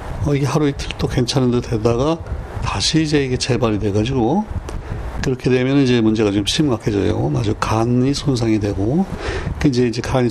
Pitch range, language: 105-130 Hz, Korean